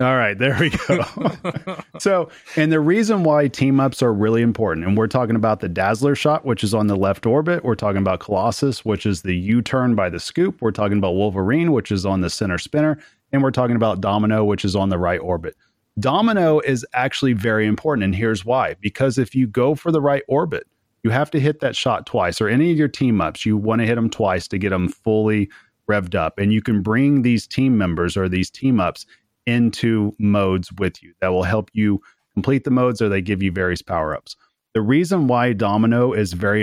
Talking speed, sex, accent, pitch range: 220 wpm, male, American, 105-130 Hz